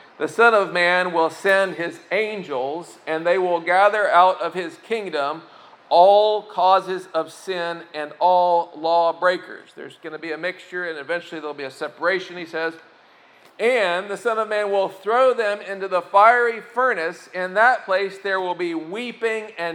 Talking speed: 175 wpm